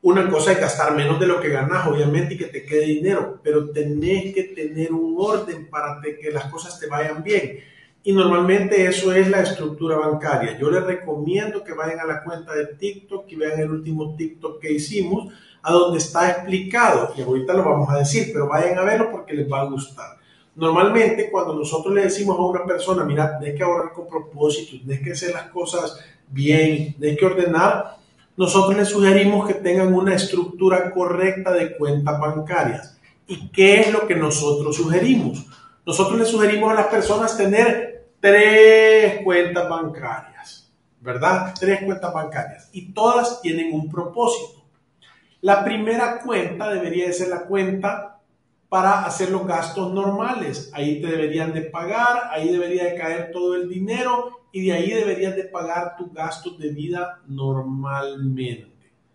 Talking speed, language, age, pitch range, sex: 170 wpm, Spanish, 40-59, 155-195 Hz, male